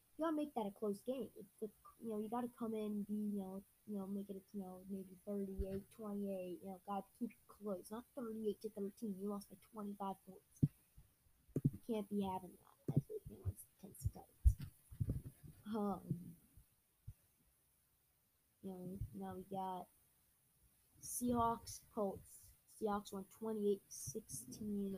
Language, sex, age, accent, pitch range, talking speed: English, female, 20-39, American, 180-210 Hz, 155 wpm